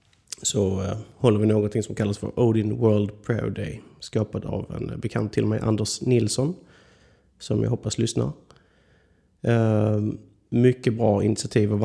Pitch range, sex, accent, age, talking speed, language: 100-115 Hz, male, native, 30-49, 145 wpm, Swedish